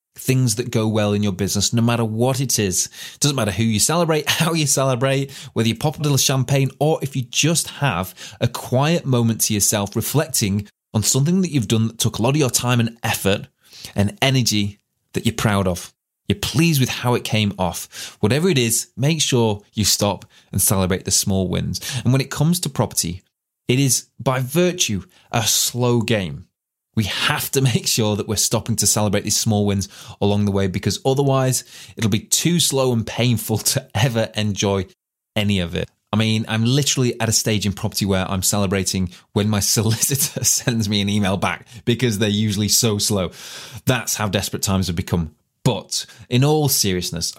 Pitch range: 100-130 Hz